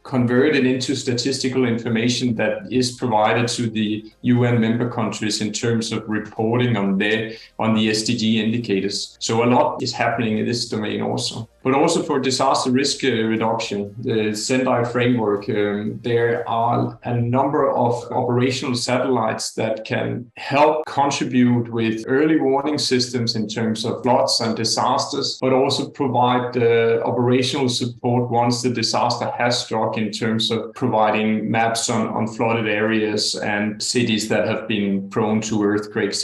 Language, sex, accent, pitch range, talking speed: English, male, Danish, 110-125 Hz, 150 wpm